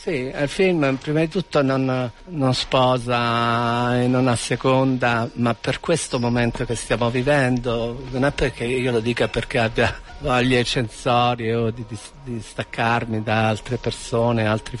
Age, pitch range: 50-69, 115-135 Hz